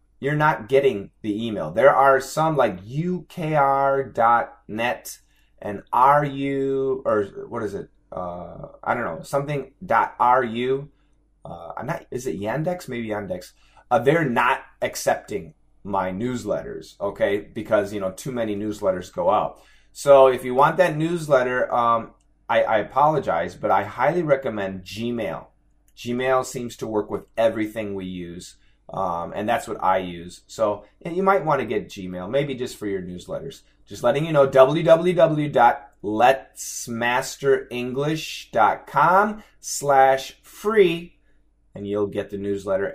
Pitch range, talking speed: 110-140 Hz, 135 wpm